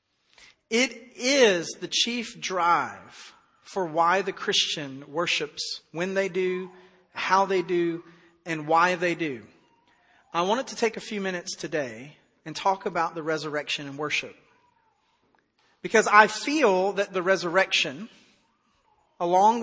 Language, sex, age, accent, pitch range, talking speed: English, male, 40-59, American, 170-220 Hz, 130 wpm